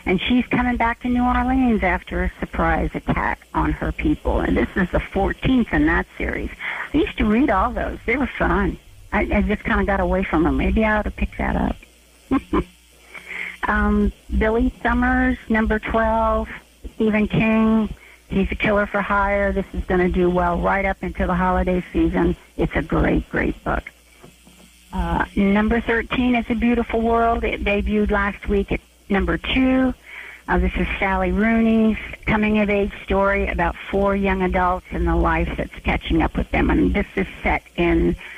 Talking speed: 180 wpm